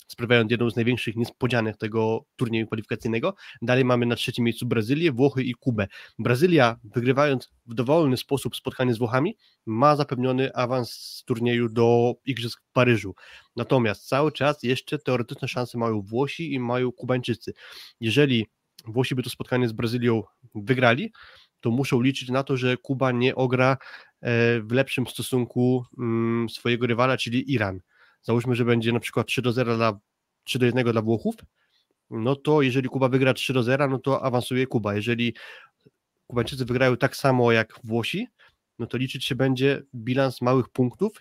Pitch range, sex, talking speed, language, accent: 120-130 Hz, male, 160 wpm, Polish, native